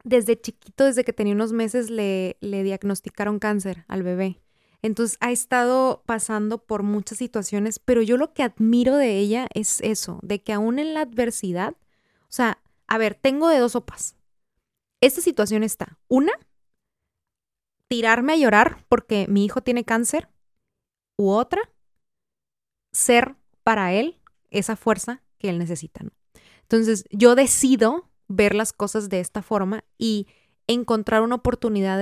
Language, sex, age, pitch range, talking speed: Spanish, female, 20-39, 210-265 Hz, 145 wpm